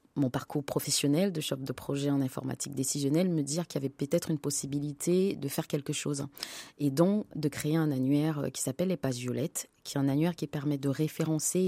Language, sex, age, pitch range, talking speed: French, female, 30-49, 135-160 Hz, 210 wpm